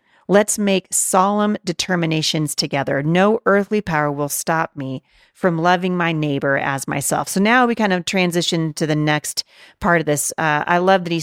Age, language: 40-59, English